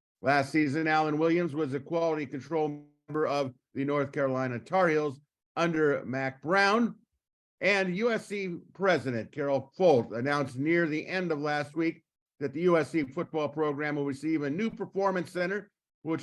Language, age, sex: English, 50-69, male